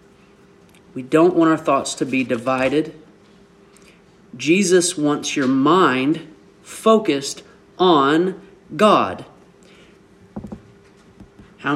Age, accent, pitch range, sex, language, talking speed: 40-59, American, 135-220 Hz, male, English, 80 wpm